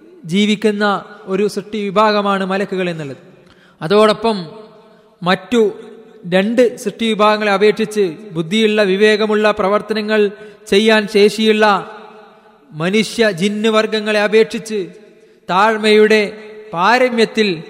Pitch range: 200-220 Hz